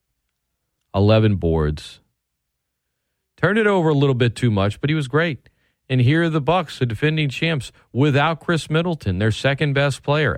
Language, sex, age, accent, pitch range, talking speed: English, male, 40-59, American, 110-155 Hz, 160 wpm